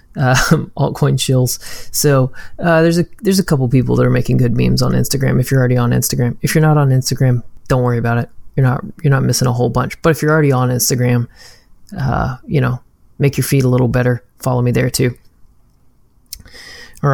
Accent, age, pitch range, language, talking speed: American, 20-39, 125-140 Hz, English, 210 wpm